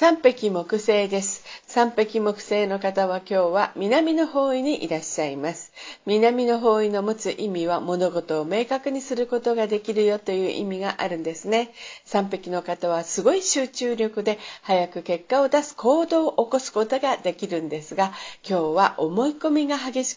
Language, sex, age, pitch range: Japanese, female, 50-69, 180-255 Hz